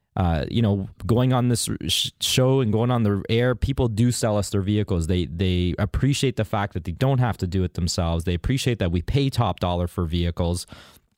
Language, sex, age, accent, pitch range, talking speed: English, male, 20-39, American, 95-125 Hz, 215 wpm